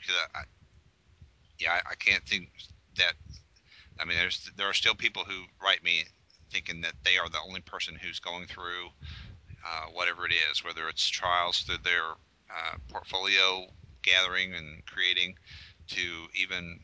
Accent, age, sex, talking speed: American, 40-59, male, 160 wpm